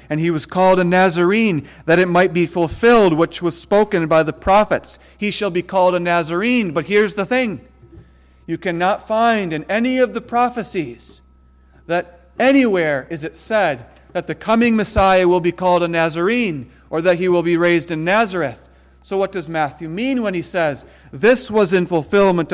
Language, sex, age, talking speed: English, male, 40-59, 185 wpm